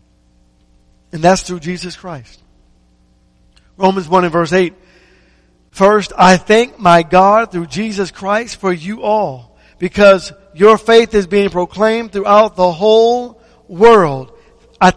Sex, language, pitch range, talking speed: male, English, 165-225 Hz, 130 wpm